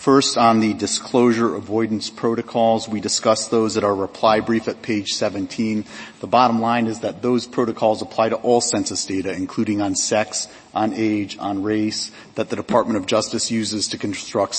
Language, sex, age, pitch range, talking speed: English, male, 40-59, 105-115 Hz, 175 wpm